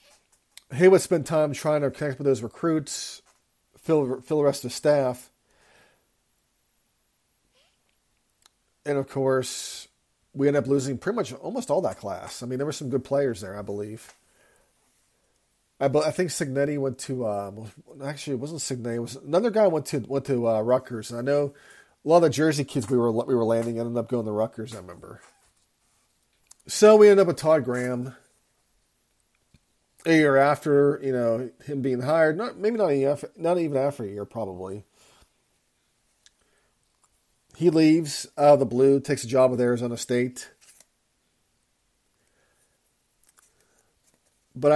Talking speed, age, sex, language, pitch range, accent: 160 wpm, 40-59, male, English, 120-150 Hz, American